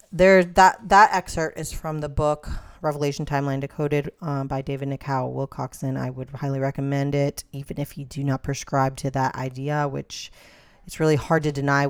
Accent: American